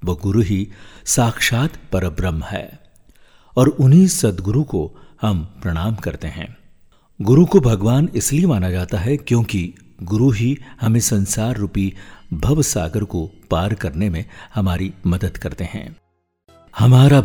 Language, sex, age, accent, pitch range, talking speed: Hindi, male, 50-69, native, 90-120 Hz, 130 wpm